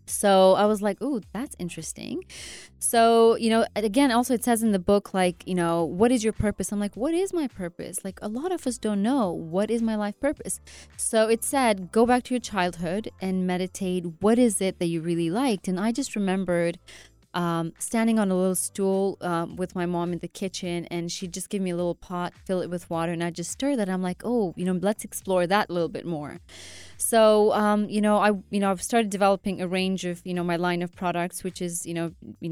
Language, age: English, 20-39